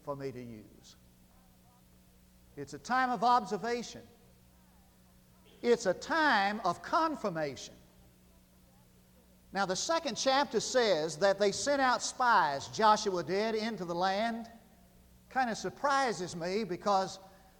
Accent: American